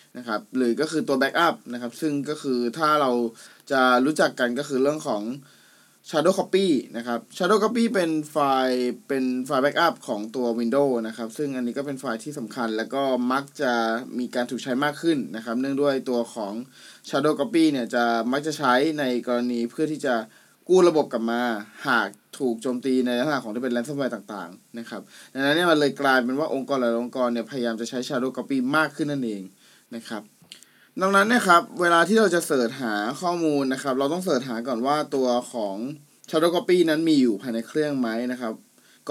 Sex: male